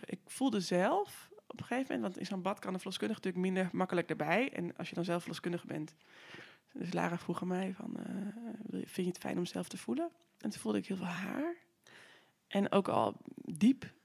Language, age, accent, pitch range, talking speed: Dutch, 20-39, Dutch, 170-230 Hz, 220 wpm